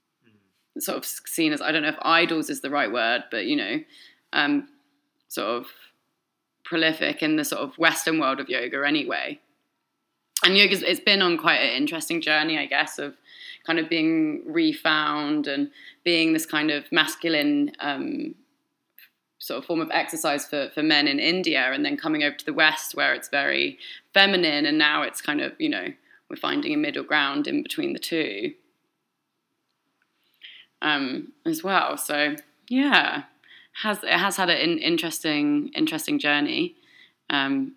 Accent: British